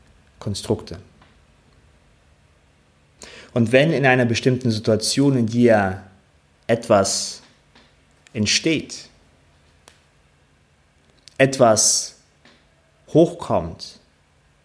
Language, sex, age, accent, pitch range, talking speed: German, male, 30-49, German, 75-120 Hz, 55 wpm